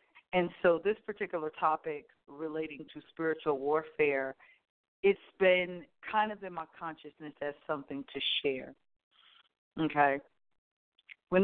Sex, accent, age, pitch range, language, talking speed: female, American, 40-59, 145-170 Hz, English, 115 wpm